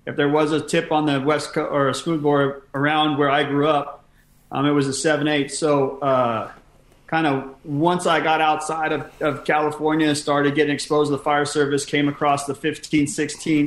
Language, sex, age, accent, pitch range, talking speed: English, male, 30-49, American, 145-165 Hz, 200 wpm